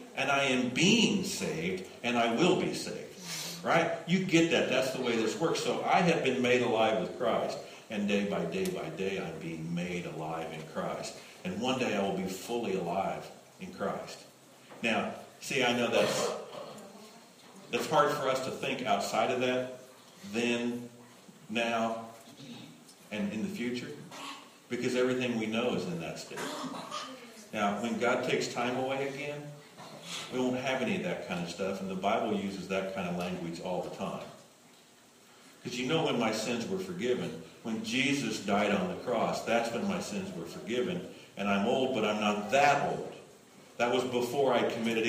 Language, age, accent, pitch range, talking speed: English, 50-69, American, 100-130 Hz, 180 wpm